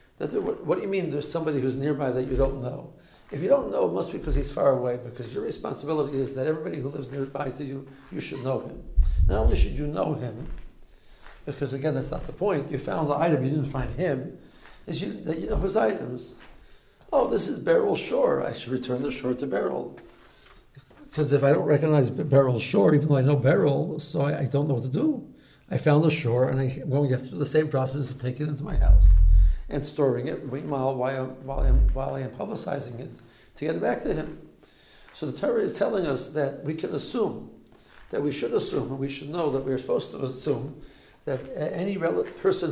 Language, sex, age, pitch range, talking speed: English, male, 60-79, 130-150 Hz, 220 wpm